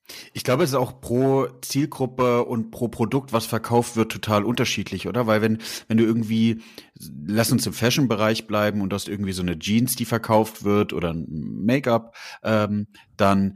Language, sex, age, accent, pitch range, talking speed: German, male, 30-49, German, 90-110 Hz, 175 wpm